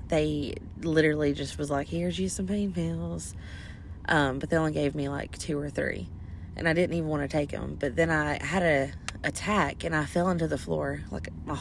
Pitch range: 95-160 Hz